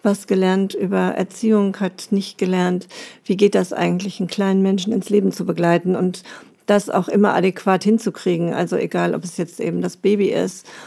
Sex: female